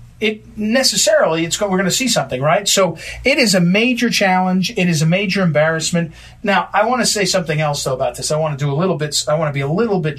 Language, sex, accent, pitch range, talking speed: English, male, American, 150-195 Hz, 260 wpm